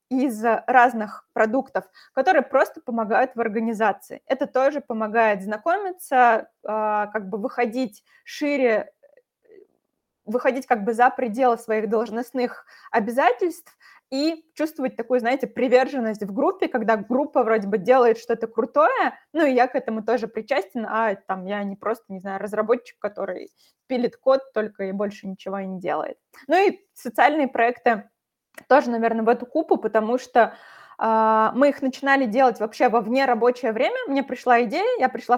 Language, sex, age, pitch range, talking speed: Russian, female, 20-39, 220-270 Hz, 150 wpm